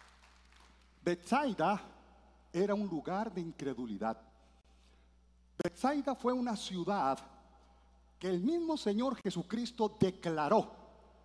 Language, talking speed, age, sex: Spanish, 85 wpm, 50-69, male